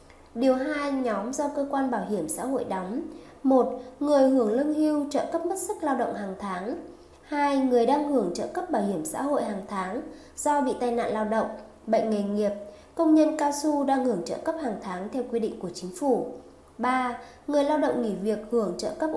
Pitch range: 225-275 Hz